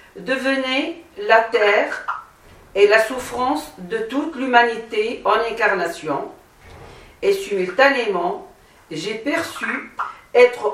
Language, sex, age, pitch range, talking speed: French, female, 50-69, 205-290 Hz, 90 wpm